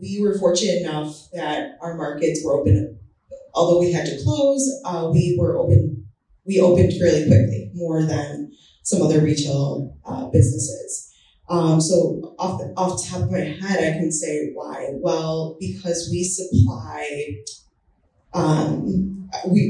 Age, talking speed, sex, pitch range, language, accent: 20-39, 150 wpm, female, 150-180 Hz, English, American